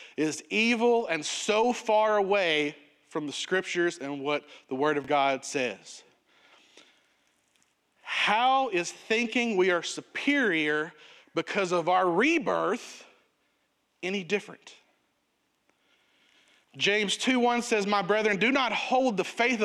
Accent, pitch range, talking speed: American, 150-210 Hz, 120 wpm